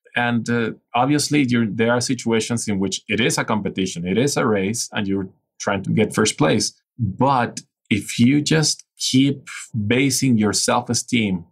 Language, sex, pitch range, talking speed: English, male, 105-125 Hz, 170 wpm